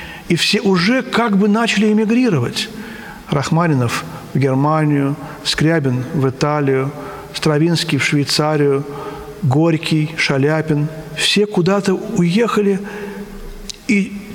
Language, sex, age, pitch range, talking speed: Russian, male, 50-69, 145-185 Hz, 90 wpm